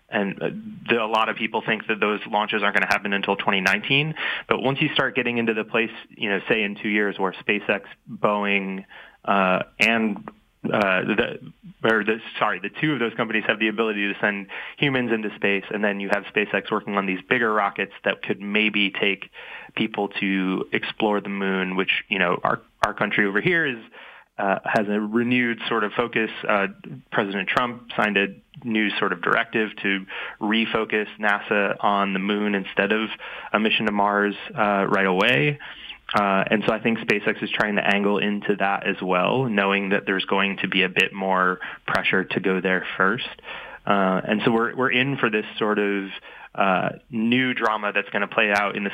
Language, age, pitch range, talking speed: English, 20-39, 100-115 Hz, 195 wpm